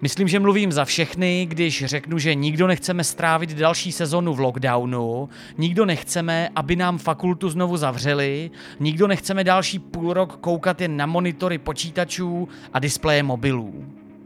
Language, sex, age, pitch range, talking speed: Czech, male, 30-49, 140-190 Hz, 145 wpm